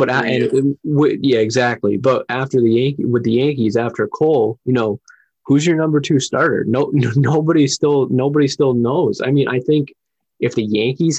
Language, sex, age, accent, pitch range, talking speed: English, male, 20-39, American, 115-135 Hz, 200 wpm